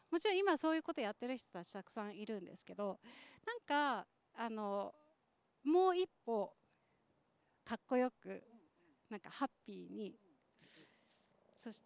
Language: Japanese